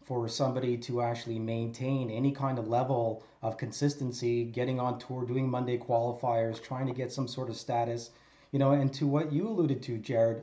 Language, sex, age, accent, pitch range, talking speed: English, male, 30-49, American, 130-155 Hz, 190 wpm